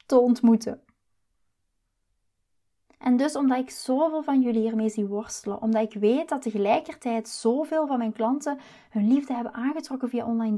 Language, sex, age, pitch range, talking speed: Dutch, female, 20-39, 215-260 Hz, 155 wpm